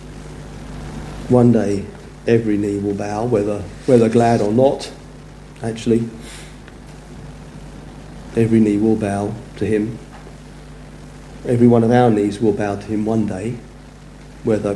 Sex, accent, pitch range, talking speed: male, British, 100-120 Hz, 120 wpm